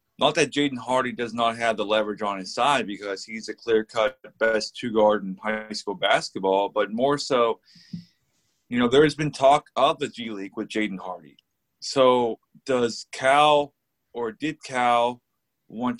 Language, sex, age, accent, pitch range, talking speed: English, male, 20-39, American, 110-135 Hz, 175 wpm